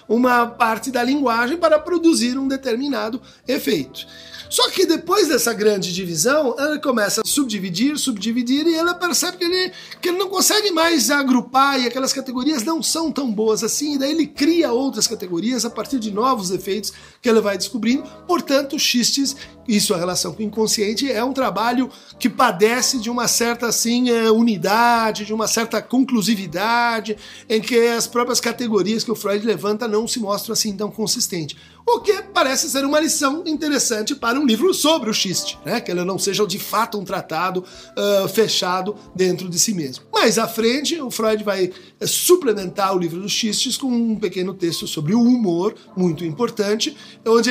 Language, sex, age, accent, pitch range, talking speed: Portuguese, male, 50-69, Brazilian, 205-265 Hz, 175 wpm